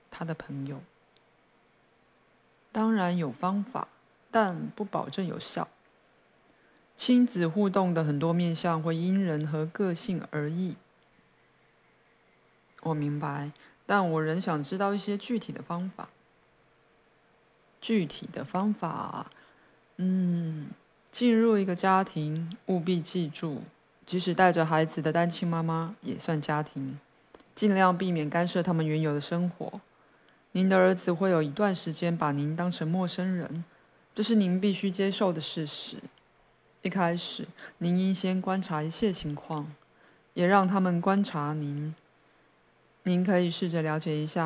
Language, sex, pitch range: Chinese, female, 155-190 Hz